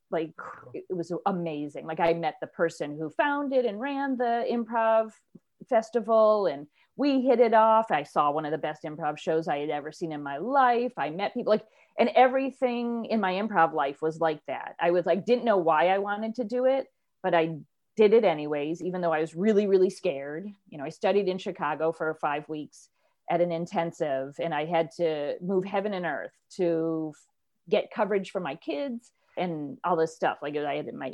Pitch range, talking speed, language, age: 160-225 Hz, 205 wpm, English, 40-59